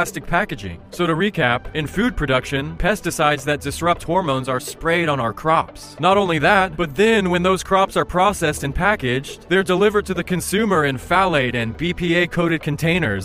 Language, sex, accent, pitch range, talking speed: English, male, American, 140-185 Hz, 170 wpm